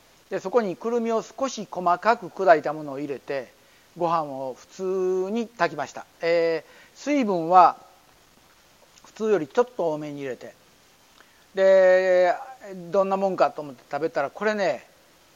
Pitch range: 140-180 Hz